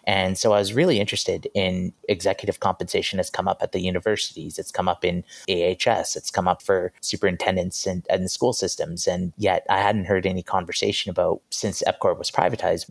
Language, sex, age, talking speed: English, male, 30-49, 190 wpm